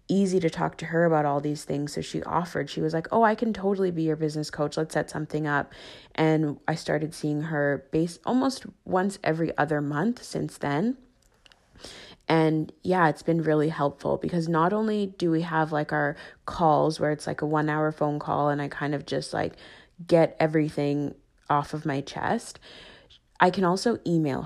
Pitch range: 150-175 Hz